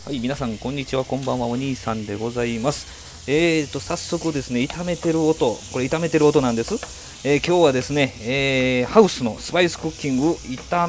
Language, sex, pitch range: Japanese, male, 120-170 Hz